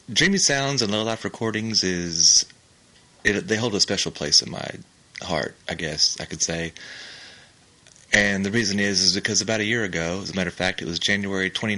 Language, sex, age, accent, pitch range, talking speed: English, male, 30-49, American, 90-105 Hz, 195 wpm